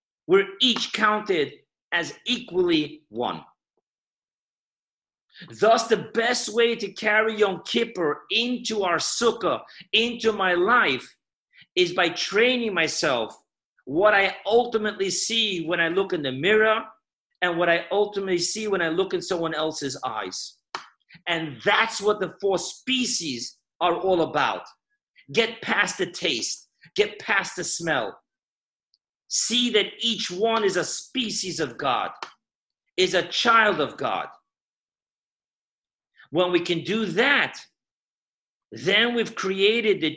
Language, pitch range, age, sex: English, 175-230 Hz, 50-69, male